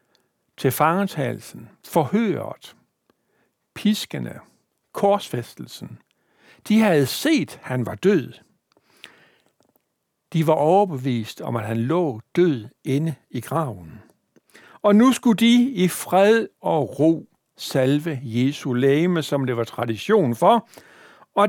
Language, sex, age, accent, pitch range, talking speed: Danish, male, 60-79, native, 130-190 Hz, 110 wpm